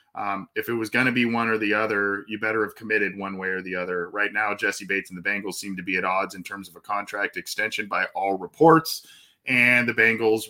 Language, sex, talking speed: English, male, 250 wpm